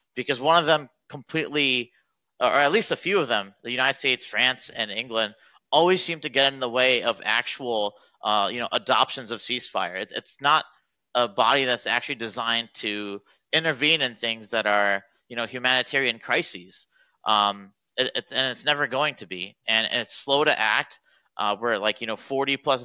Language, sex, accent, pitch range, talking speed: English, male, American, 110-140 Hz, 190 wpm